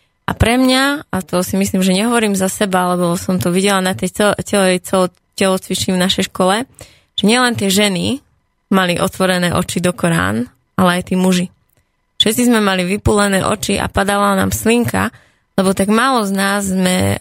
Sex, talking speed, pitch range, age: female, 180 wpm, 175-195 Hz, 20-39